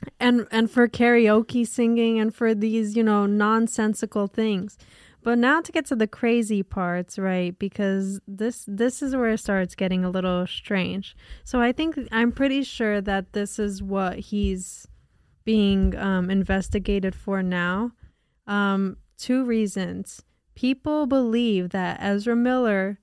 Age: 10-29